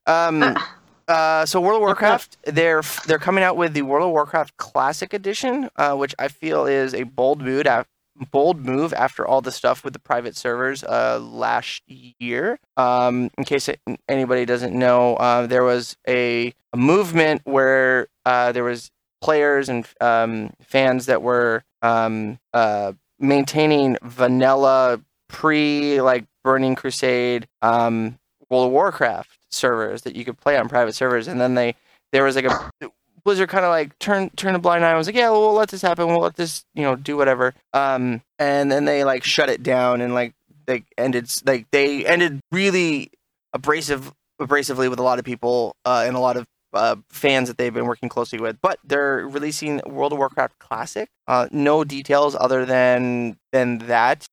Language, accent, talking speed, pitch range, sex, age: English, American, 180 wpm, 125-150 Hz, male, 20-39